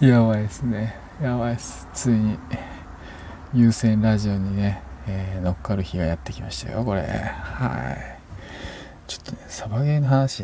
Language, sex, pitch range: Japanese, male, 95-125 Hz